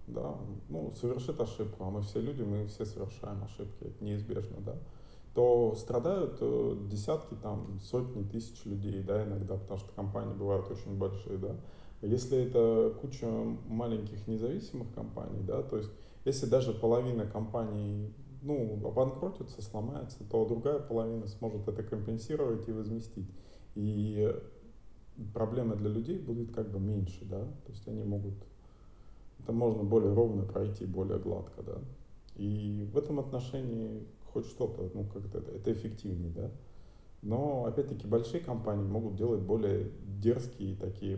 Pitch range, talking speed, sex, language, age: 100-115 Hz, 130 wpm, male, Russian, 20-39